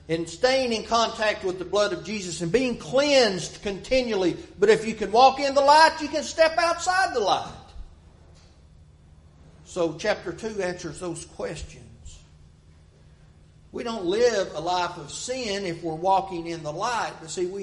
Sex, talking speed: male, 165 wpm